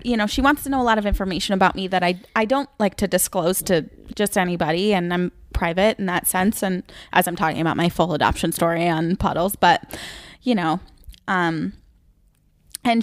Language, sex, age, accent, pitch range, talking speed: English, female, 10-29, American, 190-260 Hz, 205 wpm